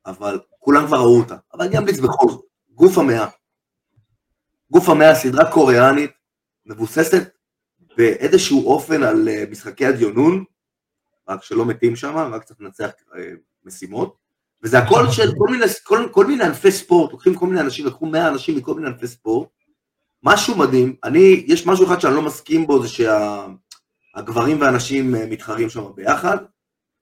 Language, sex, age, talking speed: Hebrew, male, 30-49, 150 wpm